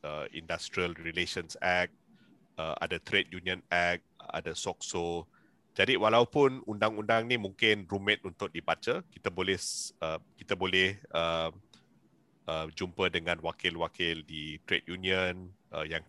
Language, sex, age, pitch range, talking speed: Malay, male, 30-49, 85-105 Hz, 105 wpm